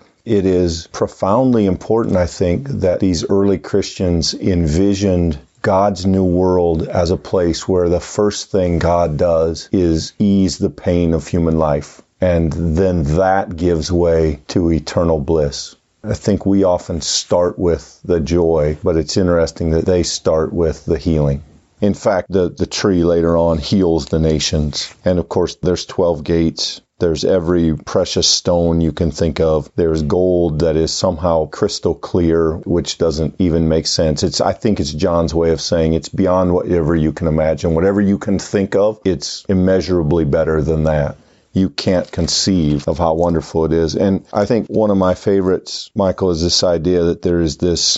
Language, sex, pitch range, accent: English, male, 80-95 Hz, American